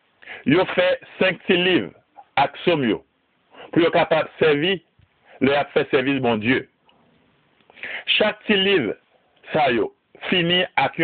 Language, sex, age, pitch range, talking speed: French, male, 60-79, 140-205 Hz, 125 wpm